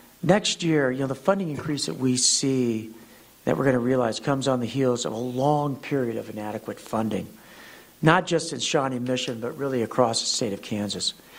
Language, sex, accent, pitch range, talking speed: English, male, American, 125-155 Hz, 200 wpm